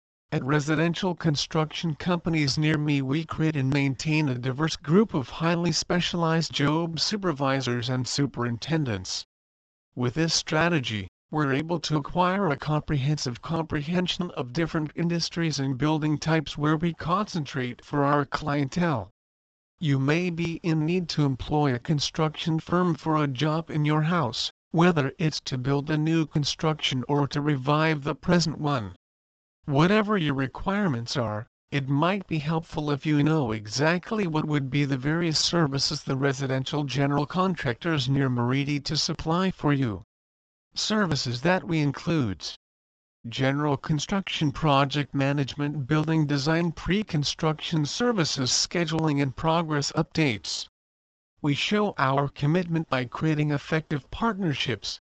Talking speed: 135 wpm